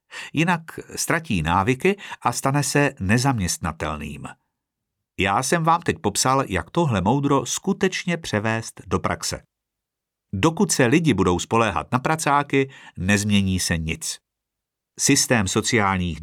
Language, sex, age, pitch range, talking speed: Czech, male, 50-69, 95-135 Hz, 115 wpm